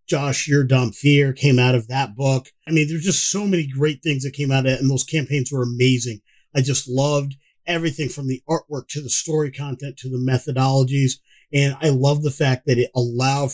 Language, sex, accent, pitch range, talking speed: English, male, American, 130-160 Hz, 215 wpm